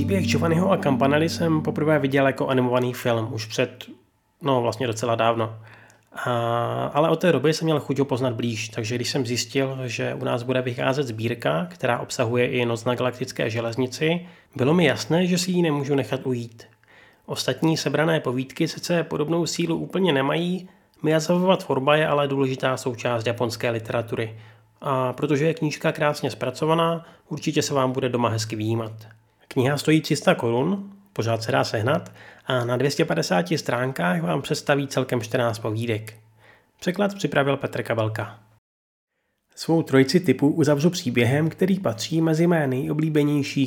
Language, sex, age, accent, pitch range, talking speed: Czech, male, 30-49, native, 120-150 Hz, 155 wpm